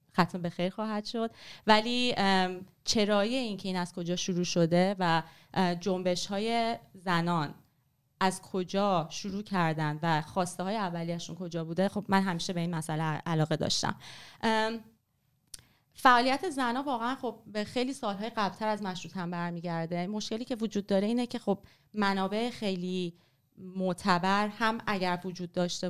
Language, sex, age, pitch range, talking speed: Persian, female, 30-49, 170-210 Hz, 145 wpm